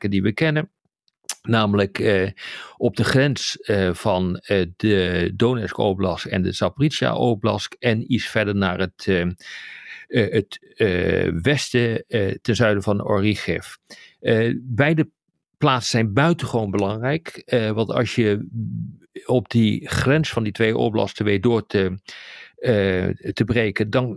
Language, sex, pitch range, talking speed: Dutch, male, 100-125 Hz, 140 wpm